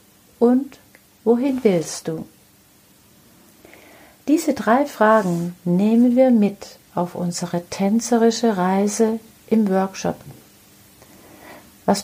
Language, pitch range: German, 185-240 Hz